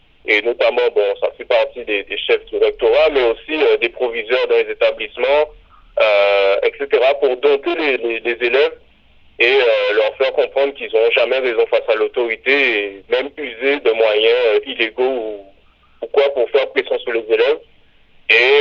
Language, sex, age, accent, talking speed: French, male, 40-59, French, 180 wpm